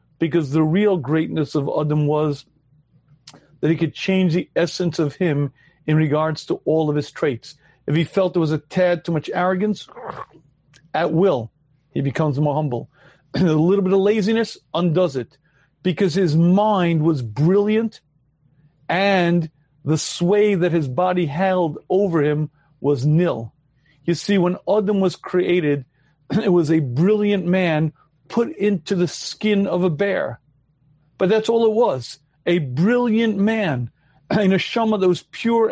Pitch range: 150-190 Hz